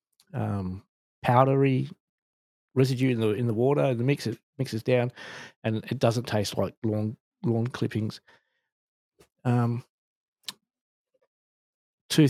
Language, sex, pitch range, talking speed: English, male, 110-145 Hz, 105 wpm